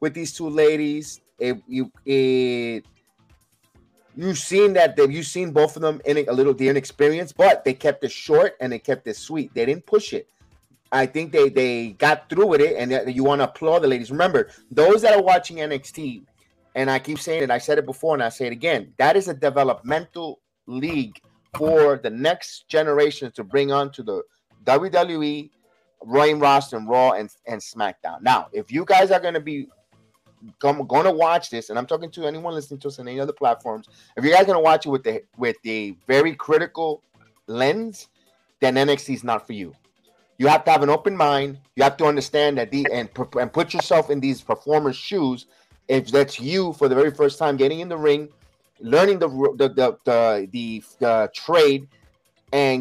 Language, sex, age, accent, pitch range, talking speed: English, male, 30-49, American, 130-160 Hz, 200 wpm